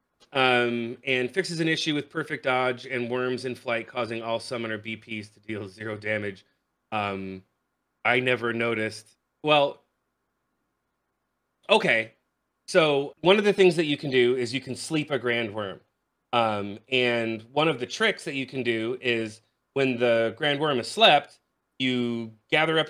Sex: male